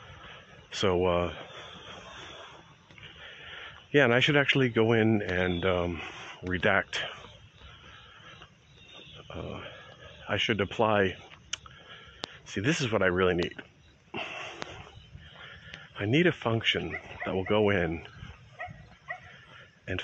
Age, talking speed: 40-59, 95 wpm